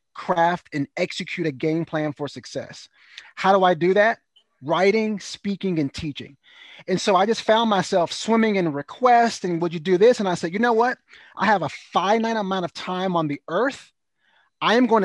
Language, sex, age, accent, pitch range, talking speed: English, male, 30-49, American, 155-200 Hz, 200 wpm